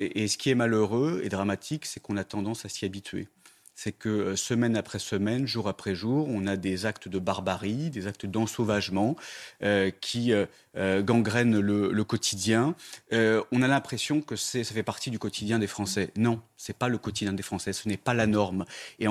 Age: 30-49